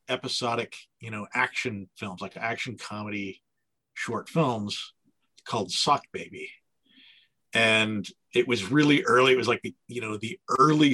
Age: 50-69